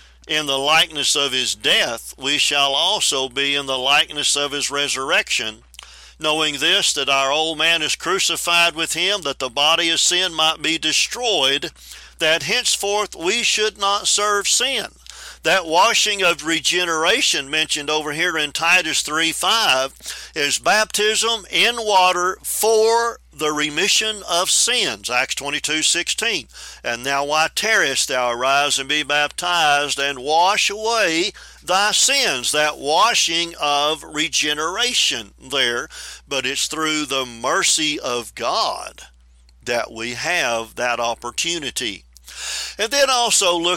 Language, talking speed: English, 140 wpm